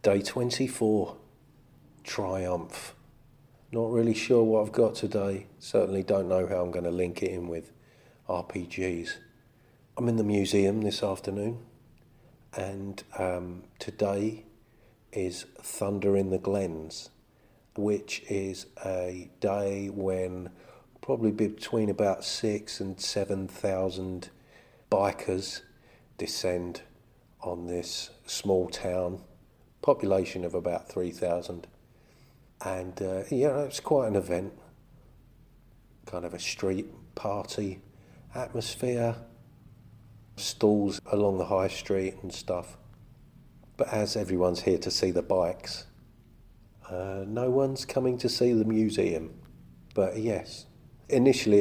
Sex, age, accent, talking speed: male, 40-59, British, 110 wpm